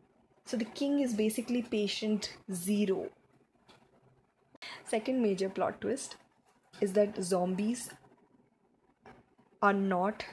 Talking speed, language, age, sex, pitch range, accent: 95 wpm, English, 20-39, female, 195-230 Hz, Indian